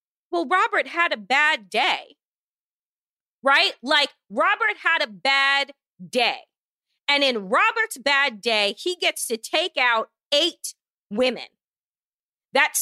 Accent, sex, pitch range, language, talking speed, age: American, female, 235-345 Hz, English, 120 wpm, 30-49